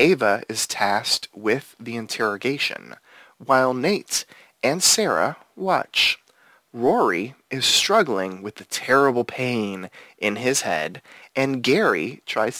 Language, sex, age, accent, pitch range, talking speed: English, male, 30-49, American, 100-135 Hz, 115 wpm